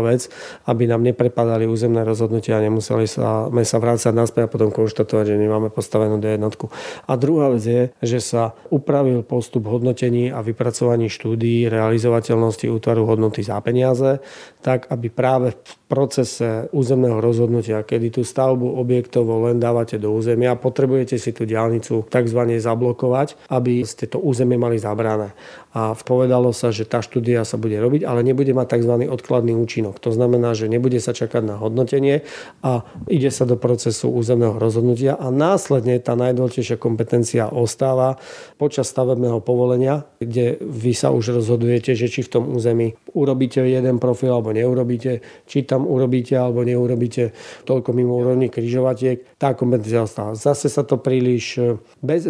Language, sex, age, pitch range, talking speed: Slovak, male, 40-59, 115-130 Hz, 155 wpm